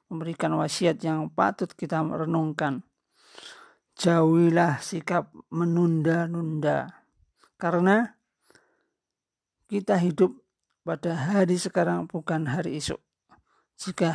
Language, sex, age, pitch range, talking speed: Indonesian, male, 50-69, 160-185 Hz, 80 wpm